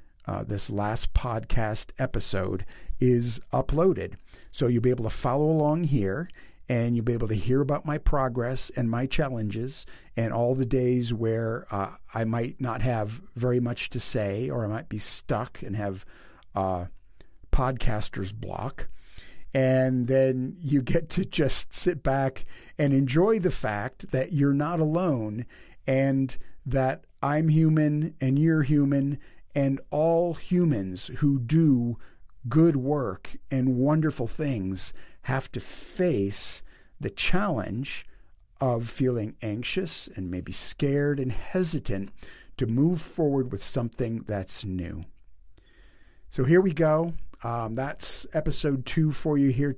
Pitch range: 110-145 Hz